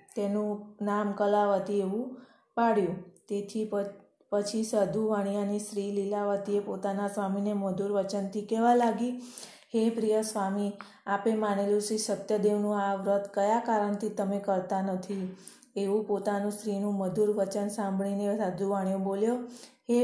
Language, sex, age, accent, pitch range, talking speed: Gujarati, female, 20-39, native, 200-215 Hz, 110 wpm